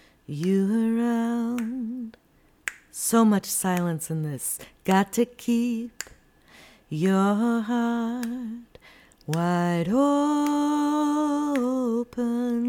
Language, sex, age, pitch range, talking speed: English, female, 30-49, 195-285 Hz, 65 wpm